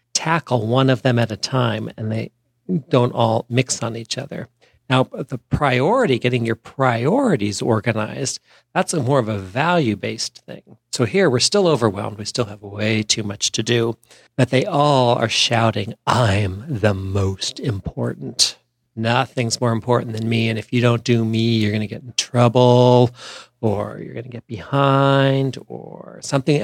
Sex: male